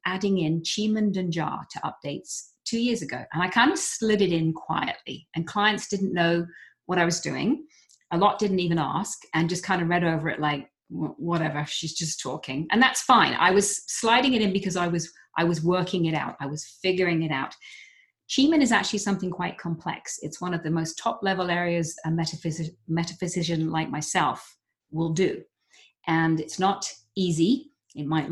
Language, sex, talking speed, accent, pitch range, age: English, female, 195 wpm, British, 160-200 Hz, 40-59